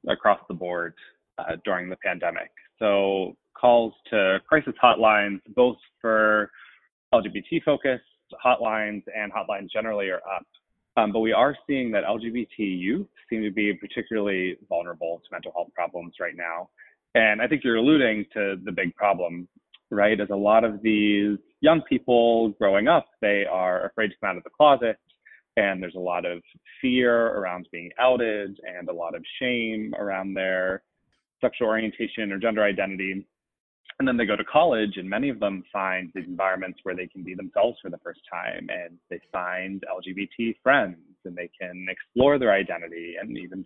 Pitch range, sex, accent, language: 95-110 Hz, male, American, English